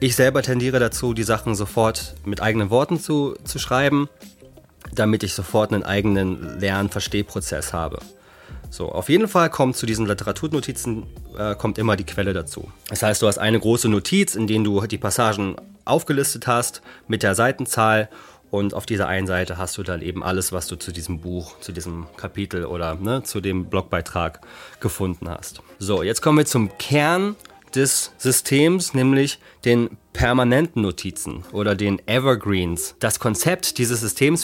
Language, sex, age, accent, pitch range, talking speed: German, male, 30-49, German, 100-130 Hz, 165 wpm